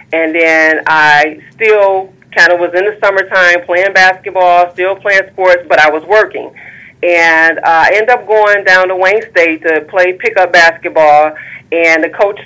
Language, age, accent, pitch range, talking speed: English, 30-49, American, 160-190 Hz, 170 wpm